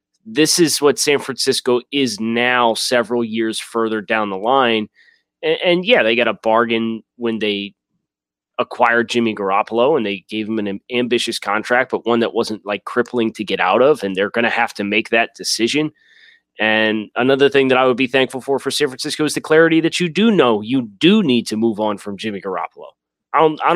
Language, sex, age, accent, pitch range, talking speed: English, male, 30-49, American, 110-135 Hz, 205 wpm